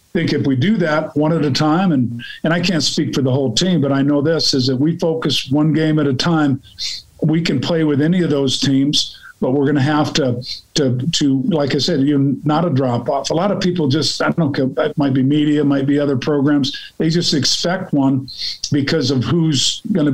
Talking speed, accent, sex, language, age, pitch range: 240 wpm, American, male, English, 50-69, 135-160 Hz